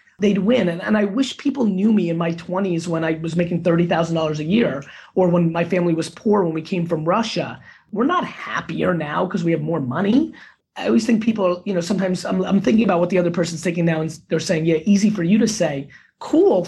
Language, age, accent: English, 30-49, American